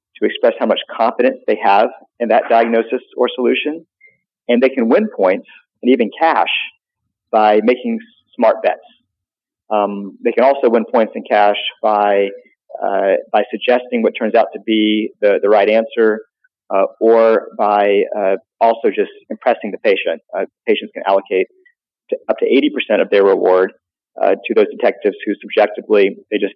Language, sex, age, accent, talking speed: English, male, 40-59, American, 165 wpm